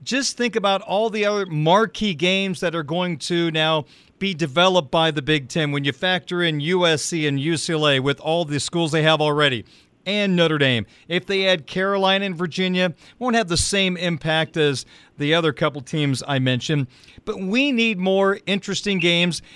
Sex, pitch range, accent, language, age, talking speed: male, 160-195 Hz, American, English, 40-59, 185 wpm